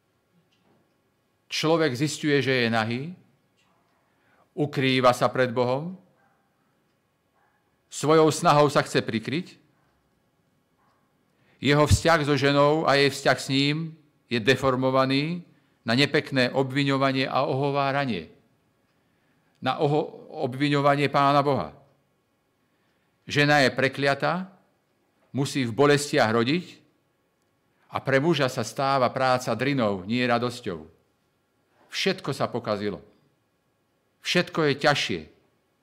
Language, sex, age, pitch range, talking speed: Slovak, male, 50-69, 125-150 Hz, 95 wpm